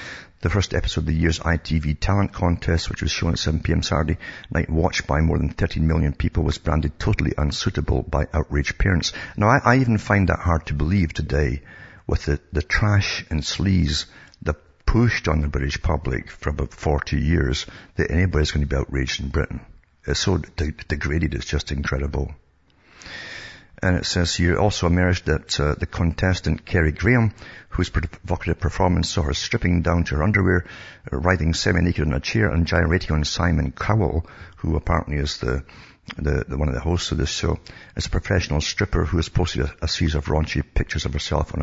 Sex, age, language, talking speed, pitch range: male, 60-79, English, 190 wpm, 75-90 Hz